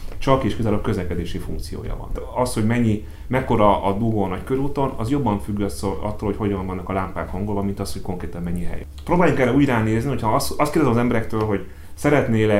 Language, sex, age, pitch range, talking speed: Hungarian, male, 30-49, 90-115 Hz, 210 wpm